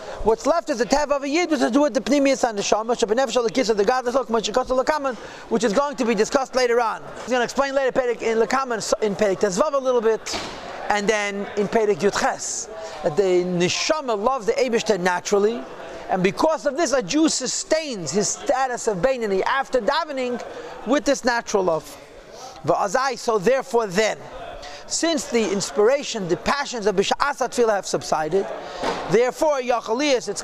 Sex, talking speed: male, 175 wpm